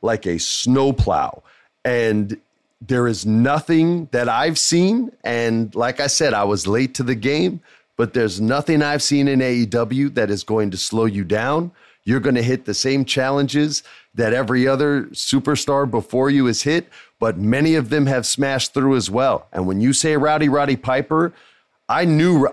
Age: 40-59